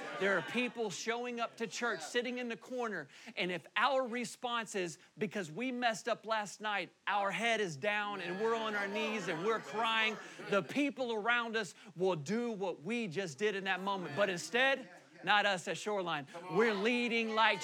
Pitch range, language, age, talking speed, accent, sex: 195-250 Hz, English, 40-59, 190 wpm, American, male